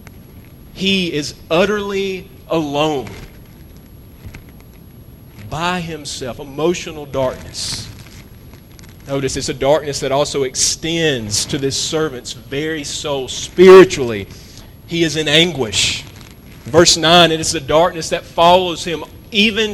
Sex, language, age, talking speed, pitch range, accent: male, English, 40-59, 105 wpm, 115-165 Hz, American